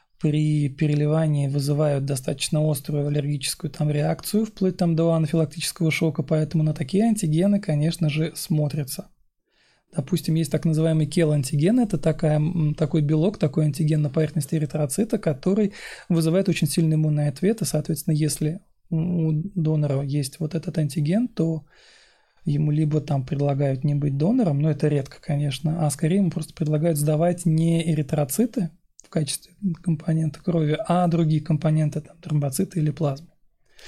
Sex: male